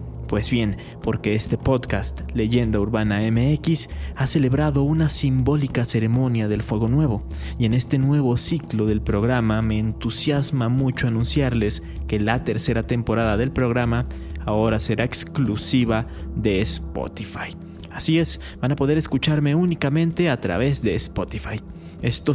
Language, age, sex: Spanish, 30-49, male